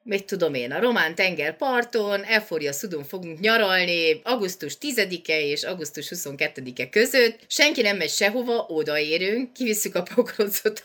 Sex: female